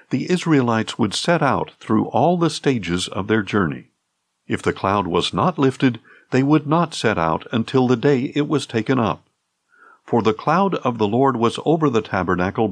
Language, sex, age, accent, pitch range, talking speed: English, male, 60-79, American, 110-145 Hz, 190 wpm